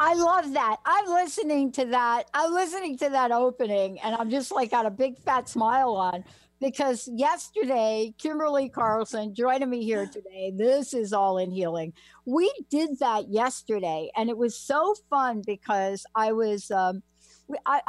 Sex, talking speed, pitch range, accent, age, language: female, 165 wpm, 195-255 Hz, American, 60-79, English